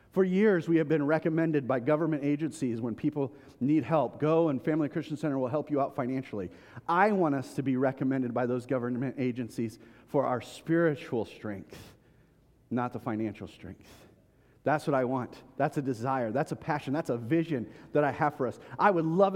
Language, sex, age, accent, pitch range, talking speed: English, male, 40-59, American, 130-165 Hz, 190 wpm